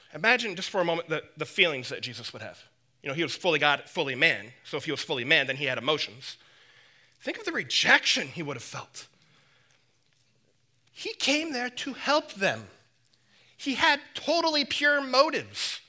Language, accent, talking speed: English, American, 185 wpm